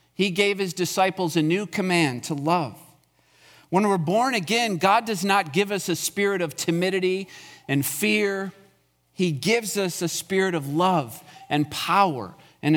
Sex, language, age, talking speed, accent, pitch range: male, English, 40-59, 160 wpm, American, 150-195 Hz